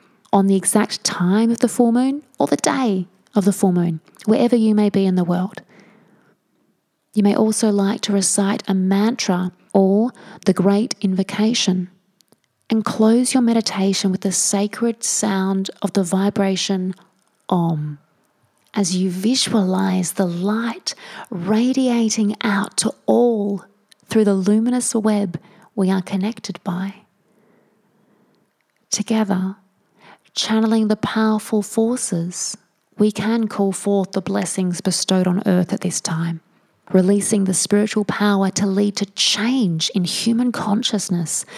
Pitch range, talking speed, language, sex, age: 190-220 Hz, 130 wpm, English, female, 30-49